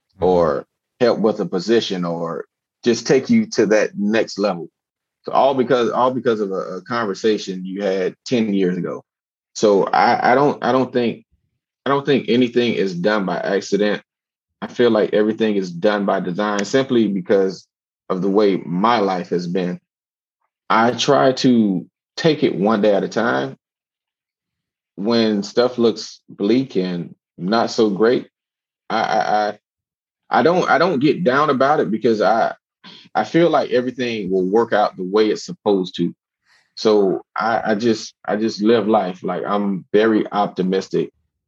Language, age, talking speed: English, 30-49, 165 wpm